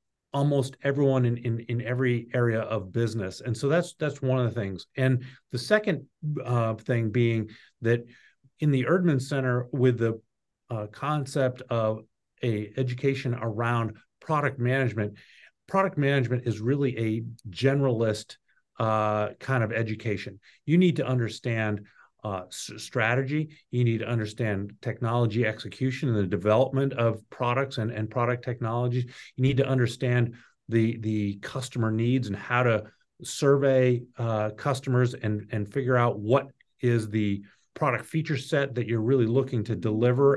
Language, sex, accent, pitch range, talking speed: English, male, American, 110-135 Hz, 145 wpm